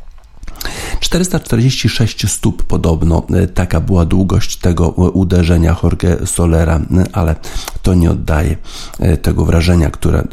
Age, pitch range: 50-69, 85-95 Hz